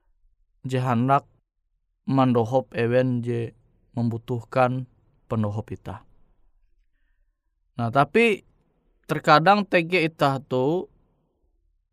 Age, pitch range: 20-39, 95-145 Hz